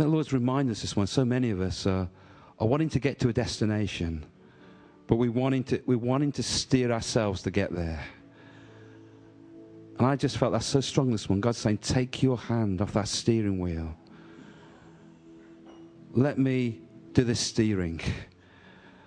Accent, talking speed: British, 160 wpm